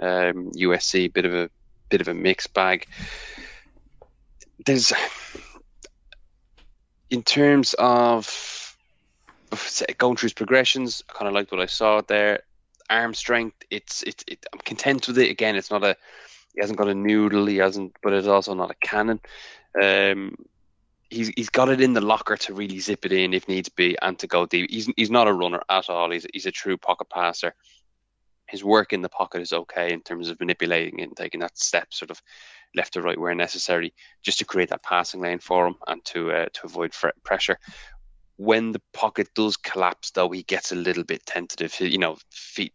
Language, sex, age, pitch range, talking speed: English, male, 20-39, 90-110 Hz, 195 wpm